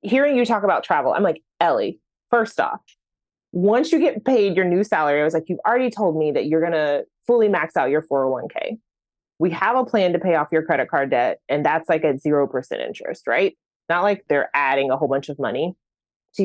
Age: 20-39